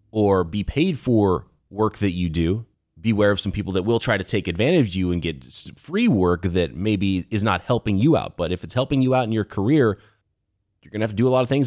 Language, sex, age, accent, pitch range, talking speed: English, male, 30-49, American, 95-120 Hz, 255 wpm